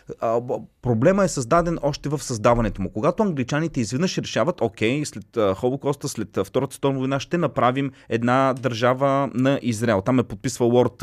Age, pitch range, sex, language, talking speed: 30-49, 115-155 Hz, male, Bulgarian, 150 wpm